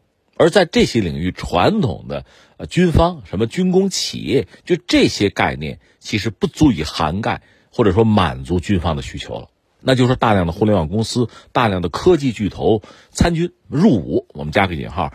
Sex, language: male, Chinese